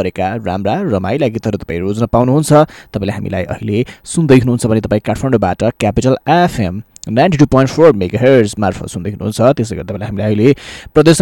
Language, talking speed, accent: English, 170 wpm, Indian